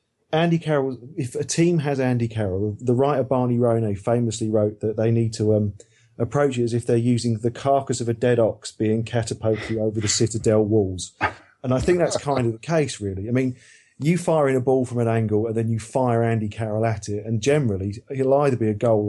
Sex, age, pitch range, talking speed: male, 40-59, 110-130 Hz, 225 wpm